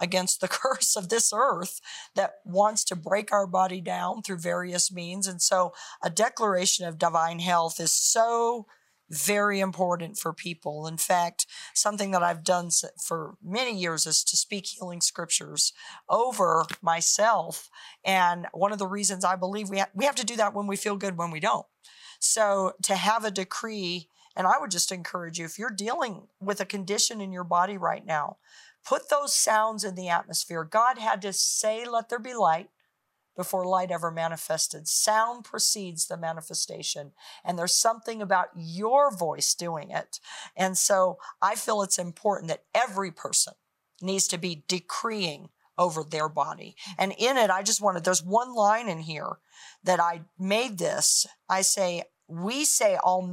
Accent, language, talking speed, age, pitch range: American, English, 170 wpm, 40-59, 175-215 Hz